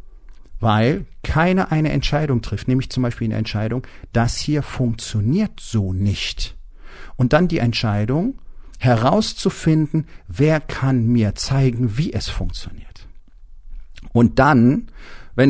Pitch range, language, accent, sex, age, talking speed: 100-140 Hz, German, German, male, 50-69, 115 wpm